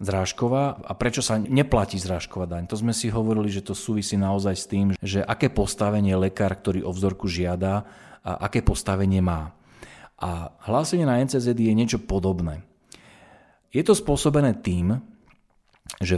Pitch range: 95-110 Hz